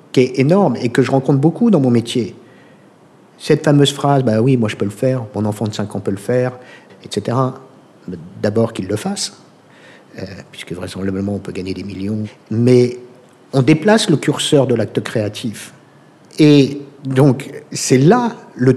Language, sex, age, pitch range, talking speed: French, male, 50-69, 110-145 Hz, 180 wpm